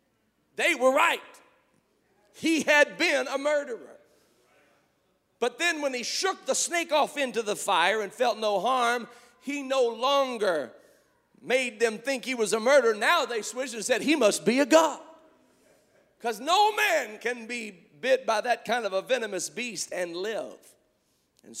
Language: English